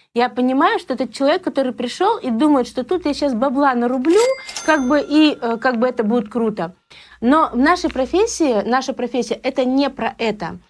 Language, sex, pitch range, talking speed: Russian, female, 230-285 Hz, 185 wpm